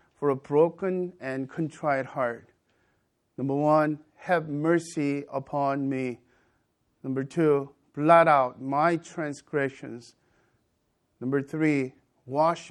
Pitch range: 120-150 Hz